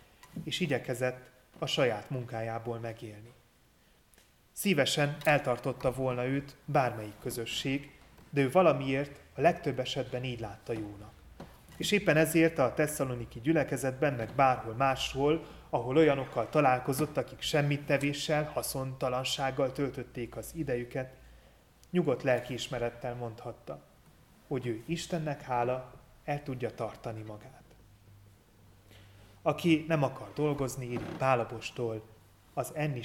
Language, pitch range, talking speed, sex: Hungarian, 120-145 Hz, 105 wpm, male